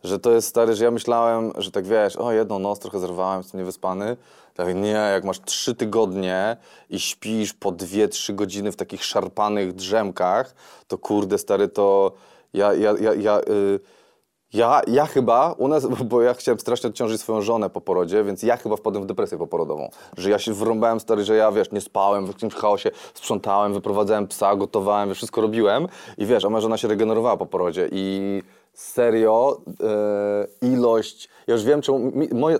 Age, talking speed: 20-39, 190 wpm